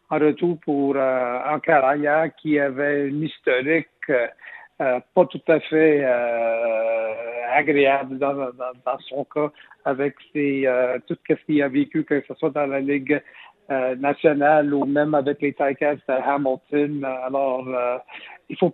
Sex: male